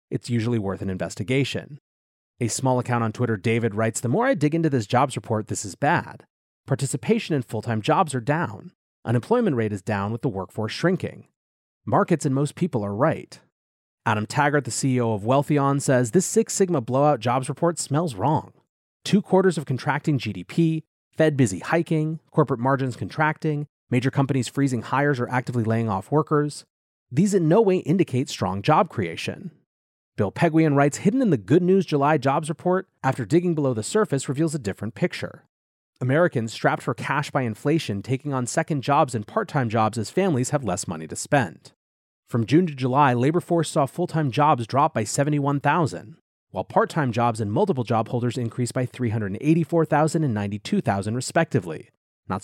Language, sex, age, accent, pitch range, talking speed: English, male, 30-49, American, 115-155 Hz, 175 wpm